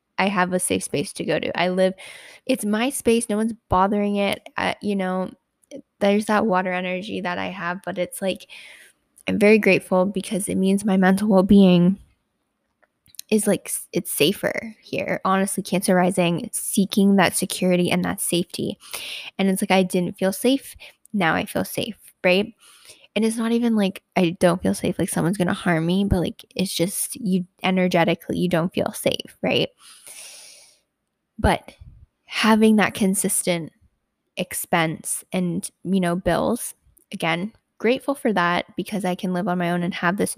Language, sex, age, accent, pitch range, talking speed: English, female, 10-29, American, 180-210 Hz, 170 wpm